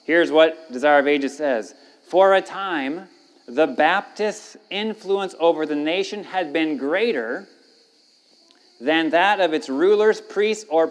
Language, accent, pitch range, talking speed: English, American, 170-265 Hz, 140 wpm